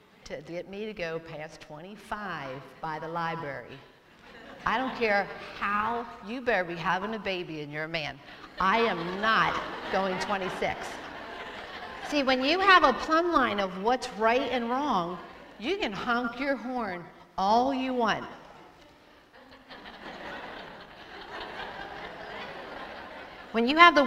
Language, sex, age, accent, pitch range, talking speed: English, female, 50-69, American, 185-245 Hz, 130 wpm